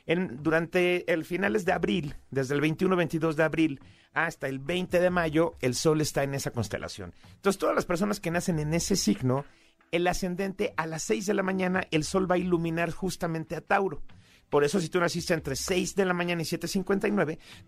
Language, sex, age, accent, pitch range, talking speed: Spanish, male, 40-59, Mexican, 140-180 Hz, 205 wpm